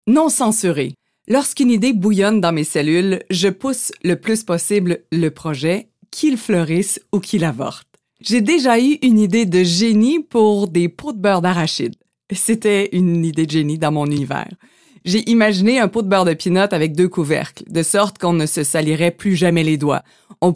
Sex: female